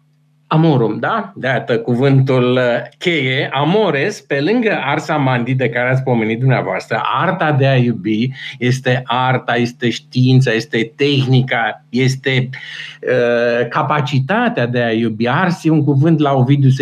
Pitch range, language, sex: 125-160 Hz, Romanian, male